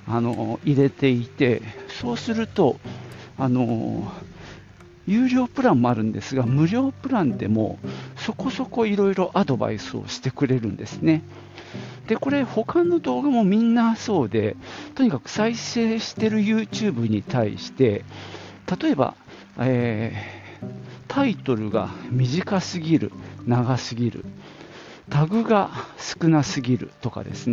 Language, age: Japanese, 50-69